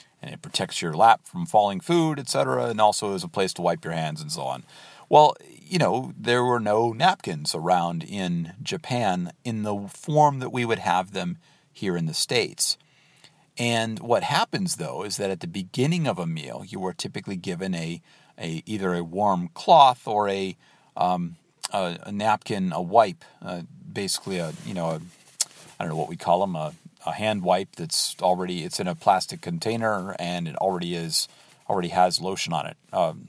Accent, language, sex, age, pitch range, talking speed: American, English, male, 40-59, 95-150 Hz, 195 wpm